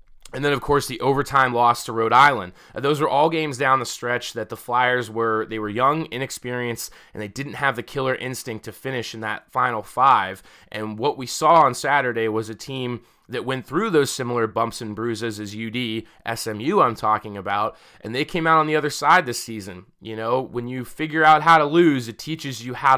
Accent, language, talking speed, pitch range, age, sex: American, English, 220 wpm, 115-135 Hz, 20-39, male